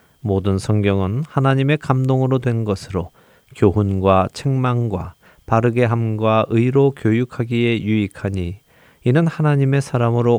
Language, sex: Korean, male